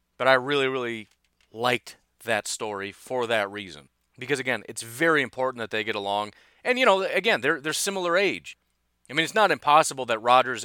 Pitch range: 105-140 Hz